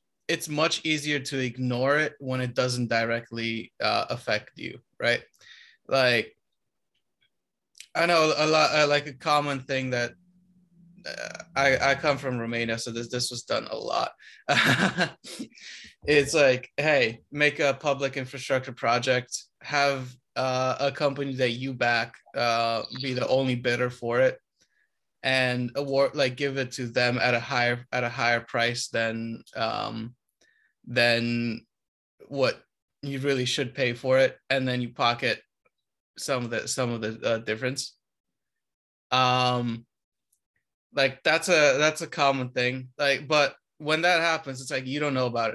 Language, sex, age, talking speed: English, male, 20-39, 150 wpm